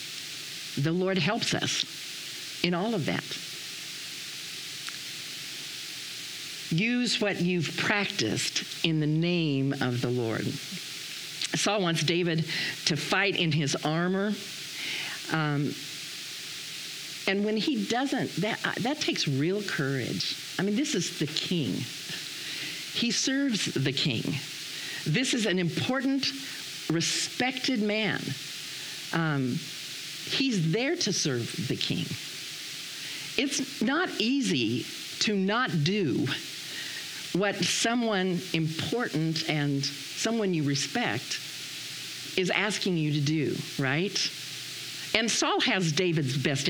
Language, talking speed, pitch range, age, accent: English, 105 wpm, 150-205 Hz, 50-69, American